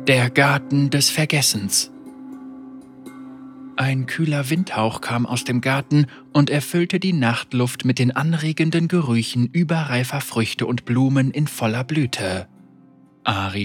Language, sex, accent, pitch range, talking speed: German, male, German, 120-155 Hz, 120 wpm